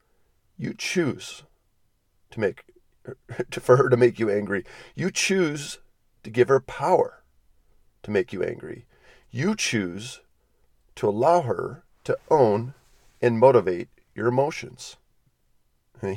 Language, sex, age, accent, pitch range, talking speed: English, male, 40-59, American, 110-160 Hz, 125 wpm